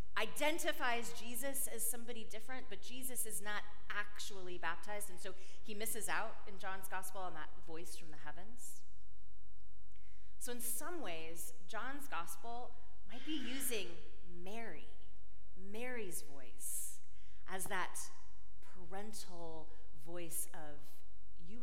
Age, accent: 30-49, American